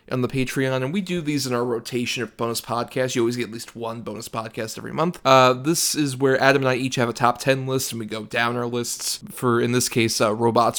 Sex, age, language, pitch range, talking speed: male, 20-39, English, 115-135 Hz, 265 wpm